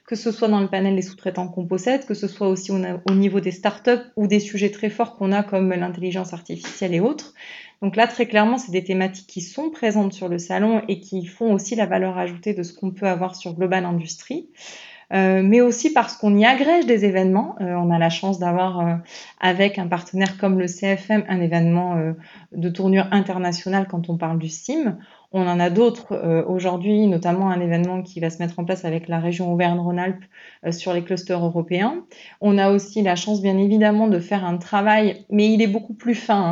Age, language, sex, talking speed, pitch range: 20-39, French, female, 215 wpm, 180-210 Hz